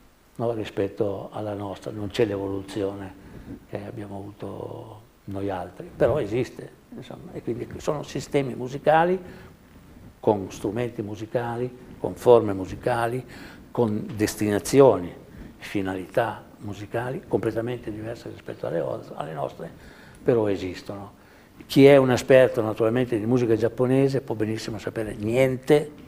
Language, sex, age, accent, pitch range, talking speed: Italian, male, 60-79, native, 100-125 Hz, 110 wpm